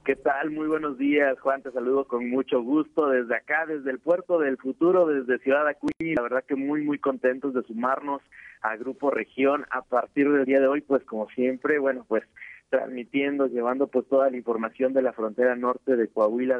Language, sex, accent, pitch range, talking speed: Spanish, male, Mexican, 115-135 Hz, 200 wpm